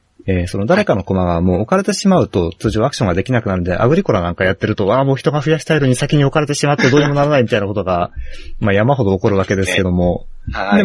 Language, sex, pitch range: Japanese, male, 95-145 Hz